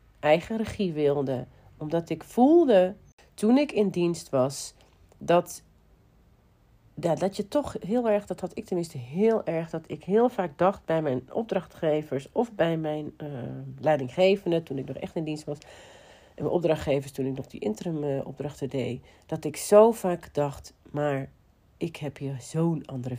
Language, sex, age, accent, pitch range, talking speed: Dutch, female, 40-59, Dutch, 135-195 Hz, 170 wpm